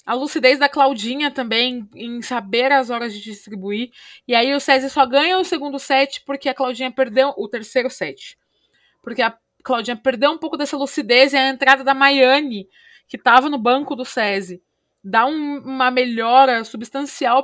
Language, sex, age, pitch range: Portuguese, female, 20-39, 225-275 Hz